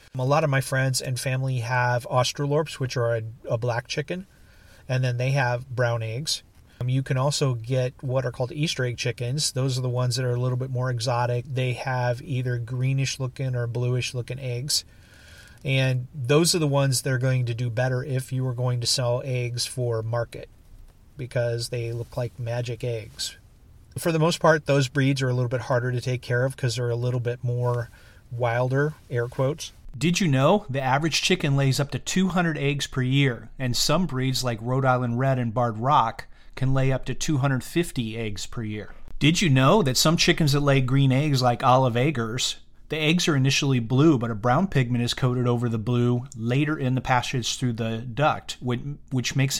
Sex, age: male, 40-59